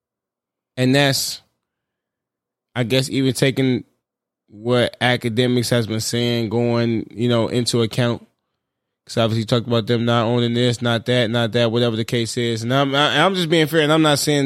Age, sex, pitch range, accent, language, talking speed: 20-39, male, 120-145 Hz, American, English, 180 wpm